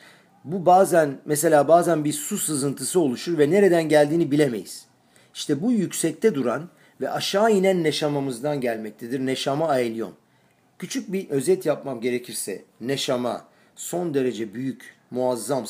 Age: 50-69